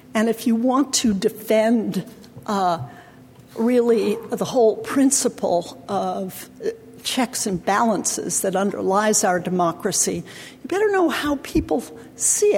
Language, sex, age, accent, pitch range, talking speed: English, female, 60-79, American, 190-265 Hz, 120 wpm